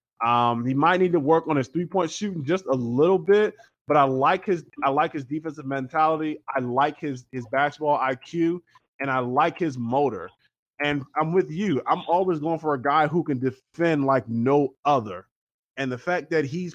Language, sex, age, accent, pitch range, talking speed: English, male, 20-39, American, 130-165 Hz, 195 wpm